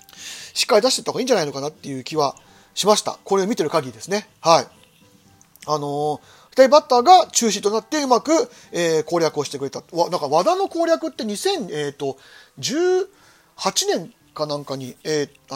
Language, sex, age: Japanese, male, 40-59